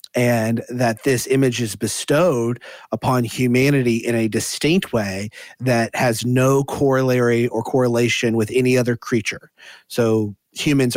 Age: 30-49